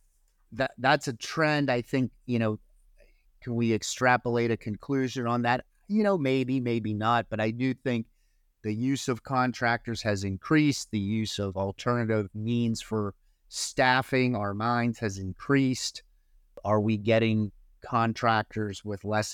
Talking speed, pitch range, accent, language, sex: 145 wpm, 100-120 Hz, American, English, male